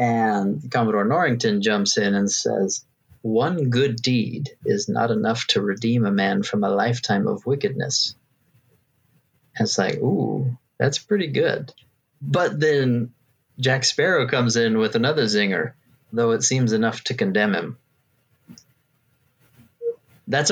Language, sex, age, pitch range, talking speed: English, male, 30-49, 115-140 Hz, 130 wpm